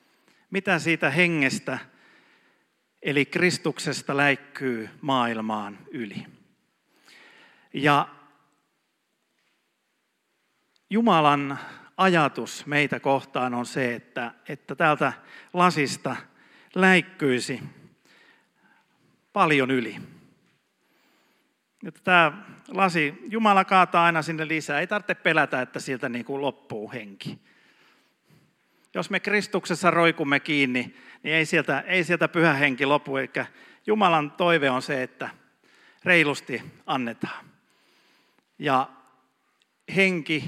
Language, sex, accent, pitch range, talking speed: Finnish, male, native, 130-175 Hz, 90 wpm